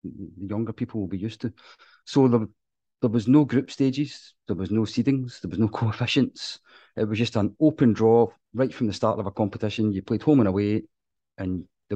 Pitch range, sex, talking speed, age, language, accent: 100-125 Hz, male, 210 wpm, 30-49, English, British